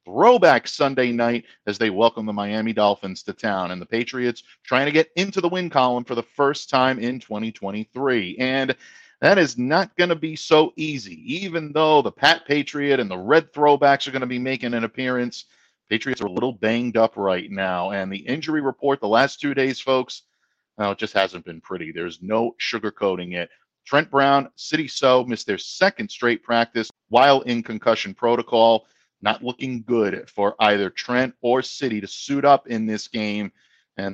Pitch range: 105-135 Hz